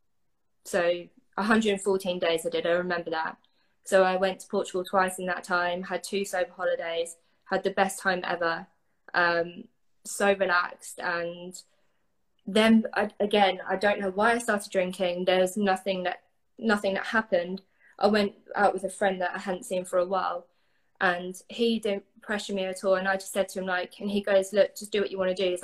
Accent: British